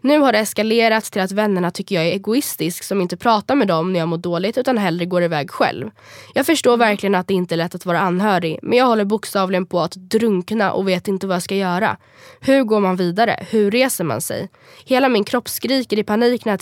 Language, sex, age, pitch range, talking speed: Swedish, female, 20-39, 185-235 Hz, 240 wpm